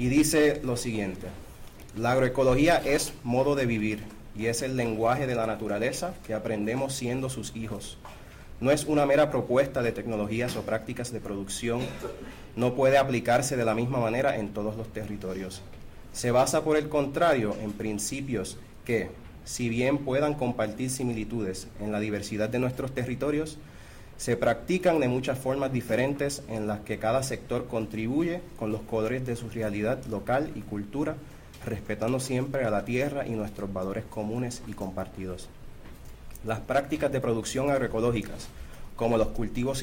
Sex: male